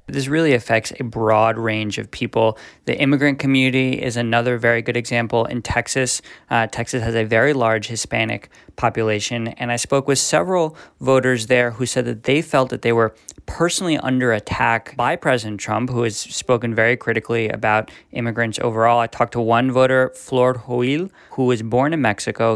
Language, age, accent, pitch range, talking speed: English, 20-39, American, 115-140 Hz, 180 wpm